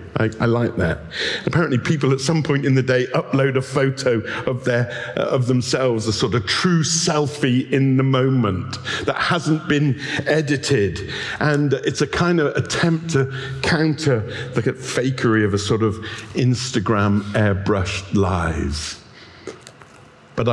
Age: 50-69